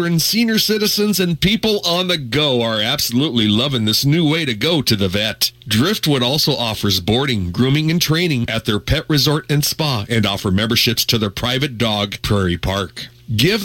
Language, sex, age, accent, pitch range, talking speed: English, male, 40-59, American, 110-155 Hz, 180 wpm